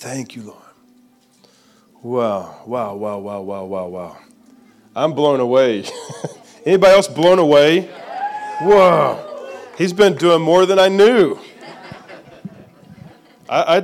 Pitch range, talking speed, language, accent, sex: 110-165 Hz, 115 wpm, English, American, male